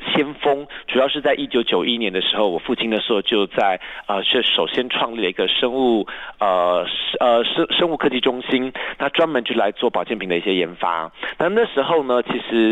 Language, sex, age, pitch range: Chinese, male, 40-59, 115-145 Hz